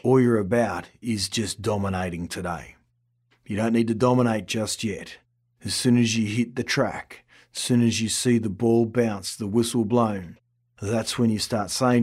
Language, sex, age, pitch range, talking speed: English, male, 40-59, 105-120 Hz, 185 wpm